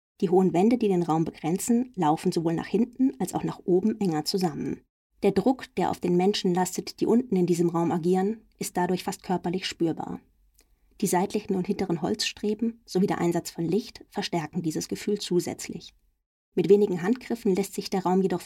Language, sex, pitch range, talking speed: German, female, 175-210 Hz, 185 wpm